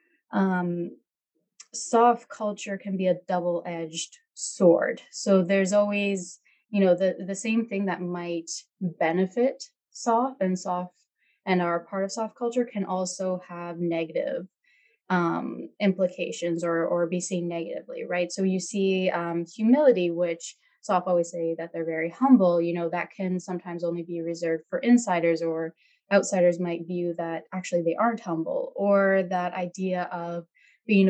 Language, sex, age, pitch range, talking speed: English, female, 20-39, 170-195 Hz, 150 wpm